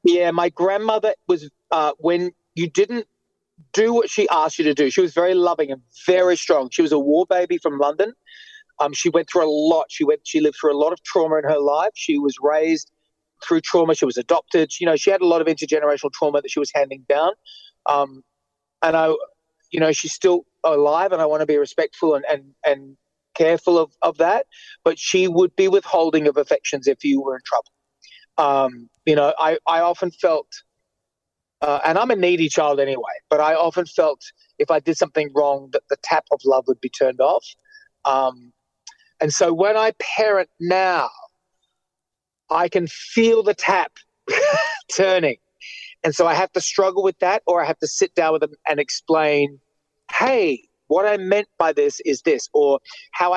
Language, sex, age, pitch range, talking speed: English, male, 30-49, 150-205 Hz, 195 wpm